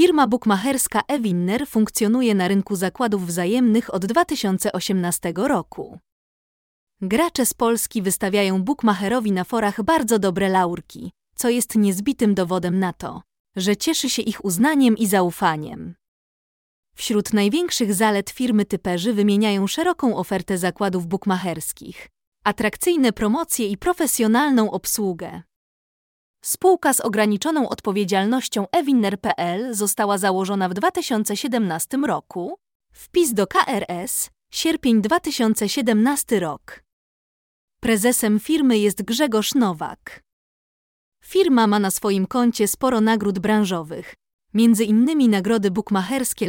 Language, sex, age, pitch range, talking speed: Polish, female, 20-39, 195-250 Hz, 105 wpm